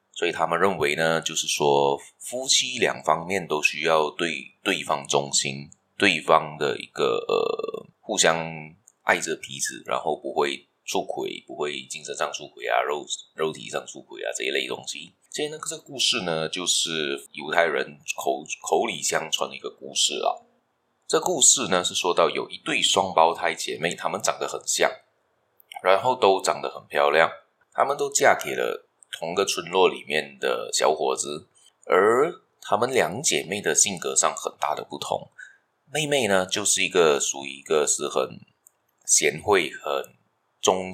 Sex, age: male, 20-39